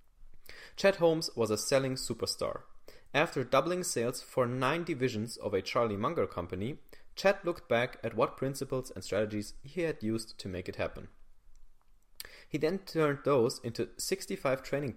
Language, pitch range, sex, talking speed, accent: English, 110-170 Hz, male, 155 wpm, German